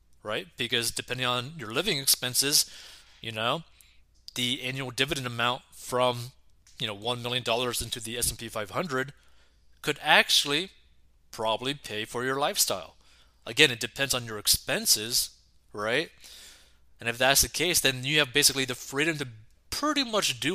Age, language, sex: 20-39, English, male